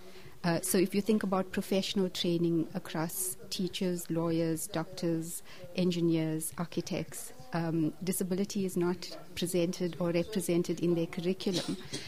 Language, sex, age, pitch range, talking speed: English, female, 60-79, 170-190 Hz, 120 wpm